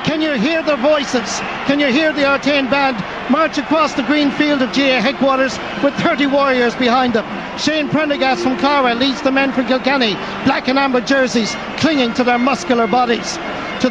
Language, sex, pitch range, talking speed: English, male, 250-290 Hz, 185 wpm